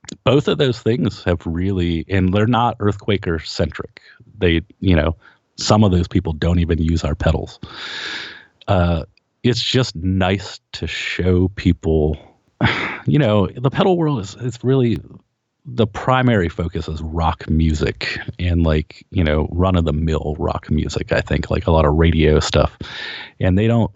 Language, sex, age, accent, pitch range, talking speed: English, male, 30-49, American, 80-95 Hz, 160 wpm